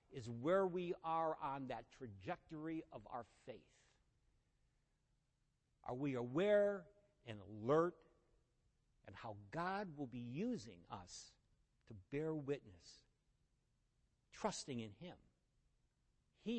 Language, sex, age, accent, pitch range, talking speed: English, male, 60-79, American, 135-190 Hz, 105 wpm